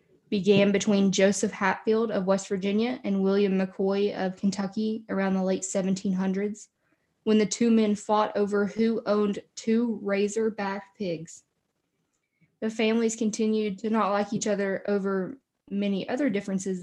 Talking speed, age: 140 wpm, 10-29